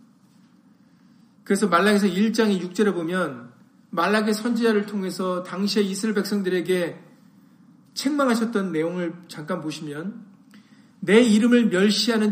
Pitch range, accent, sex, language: 170-225 Hz, native, male, Korean